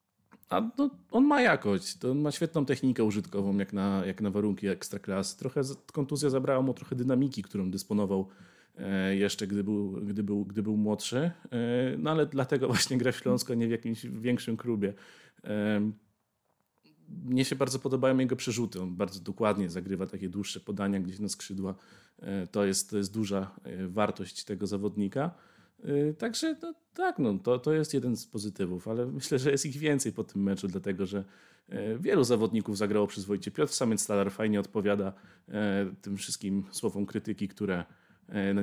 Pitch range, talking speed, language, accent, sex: 100-145 Hz, 160 wpm, Polish, native, male